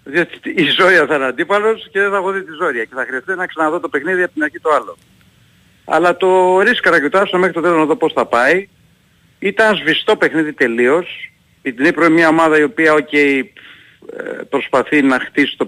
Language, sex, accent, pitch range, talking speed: Greek, male, native, 130-175 Hz, 205 wpm